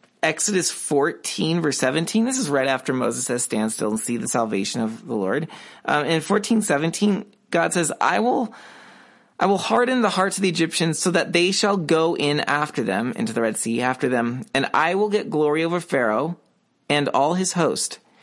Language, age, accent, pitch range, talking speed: English, 30-49, American, 145-215 Hz, 200 wpm